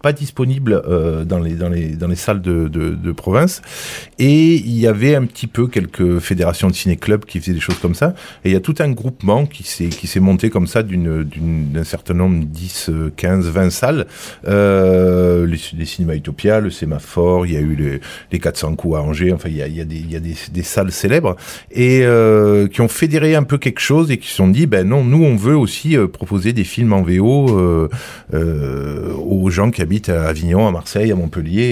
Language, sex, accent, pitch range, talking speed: French, male, French, 85-115 Hz, 230 wpm